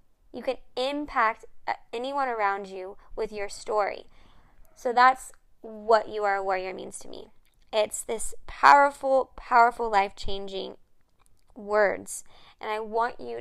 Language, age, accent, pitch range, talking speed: English, 10-29, American, 205-240 Hz, 130 wpm